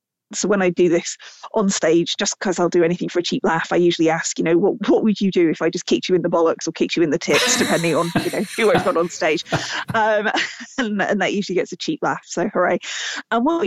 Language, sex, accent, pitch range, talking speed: English, female, British, 180-235 Hz, 270 wpm